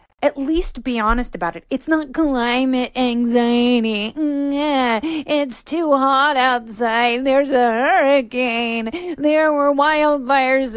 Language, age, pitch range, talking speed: English, 30-49, 230-290 Hz, 110 wpm